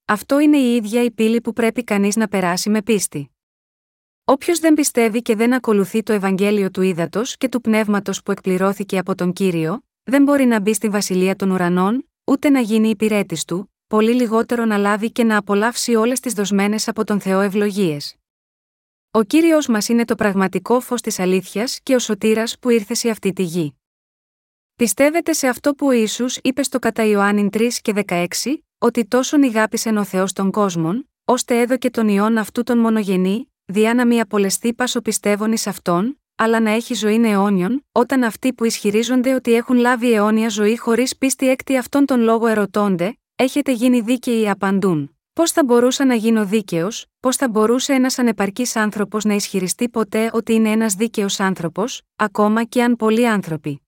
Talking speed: 180 wpm